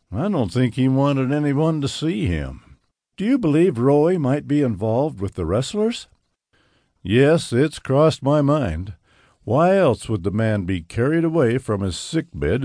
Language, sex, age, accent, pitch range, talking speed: English, male, 60-79, American, 90-140 Hz, 165 wpm